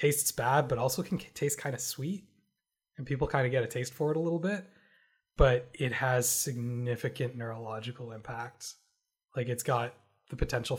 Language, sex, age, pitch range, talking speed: English, male, 20-39, 120-145 Hz, 180 wpm